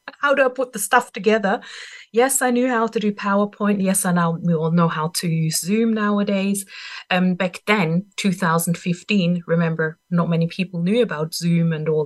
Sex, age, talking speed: female, 30-49, 190 wpm